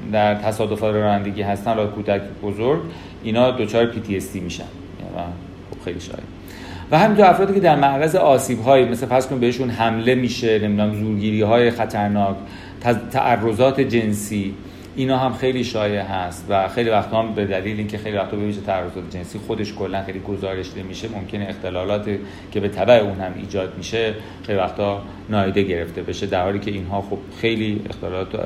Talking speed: 165 wpm